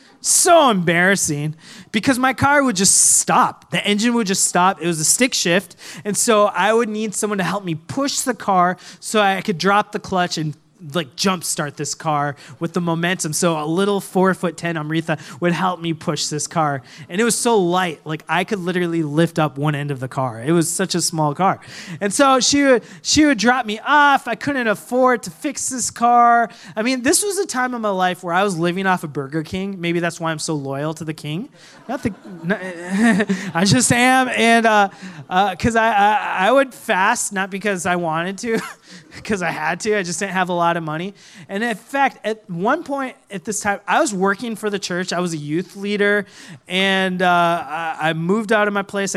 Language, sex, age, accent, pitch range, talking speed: English, male, 20-39, American, 170-215 Hz, 220 wpm